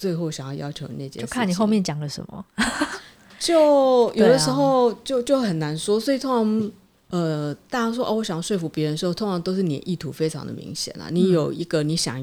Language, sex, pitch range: Chinese, female, 150-185 Hz